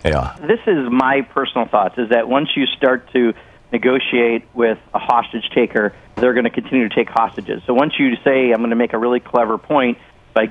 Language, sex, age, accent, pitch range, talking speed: English, male, 40-59, American, 115-130 Hz, 205 wpm